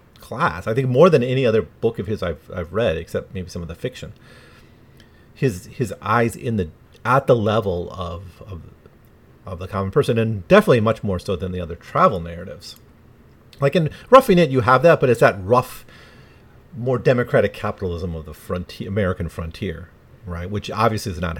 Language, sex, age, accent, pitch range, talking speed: English, male, 40-59, American, 90-120 Hz, 185 wpm